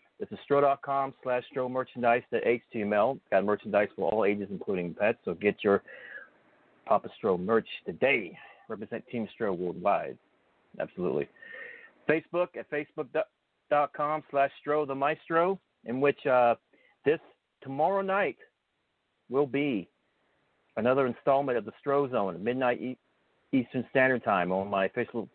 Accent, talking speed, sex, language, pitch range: American, 130 wpm, male, English, 105-140 Hz